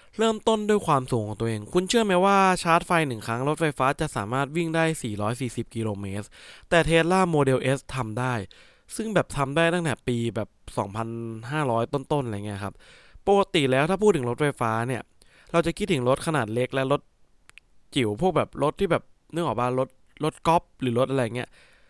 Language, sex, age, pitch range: English, male, 20-39, 115-160 Hz